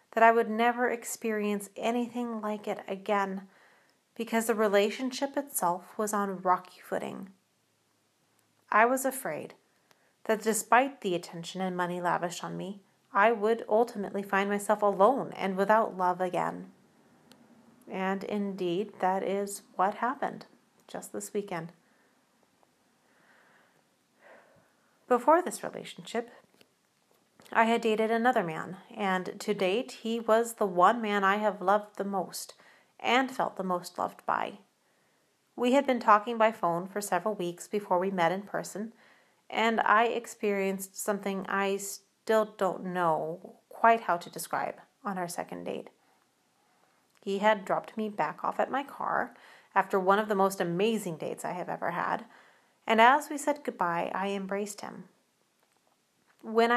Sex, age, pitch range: female, 30-49, 185-225 Hz